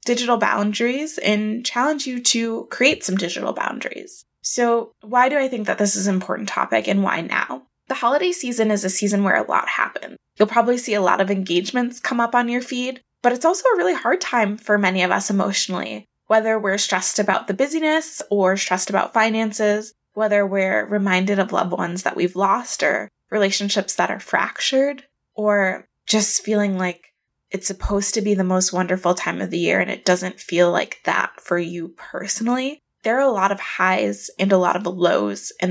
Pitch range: 190-240 Hz